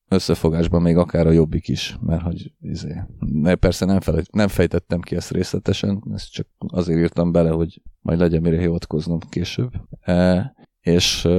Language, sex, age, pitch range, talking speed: Hungarian, male, 30-49, 85-95 Hz, 150 wpm